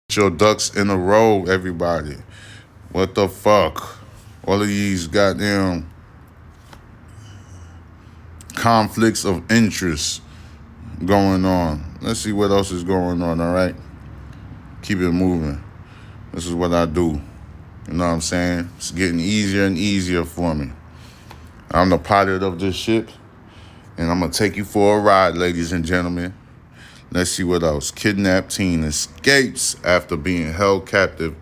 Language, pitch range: English, 85-110 Hz